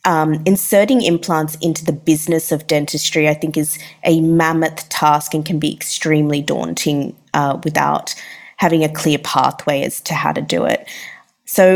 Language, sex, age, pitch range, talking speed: English, female, 20-39, 150-175 Hz, 165 wpm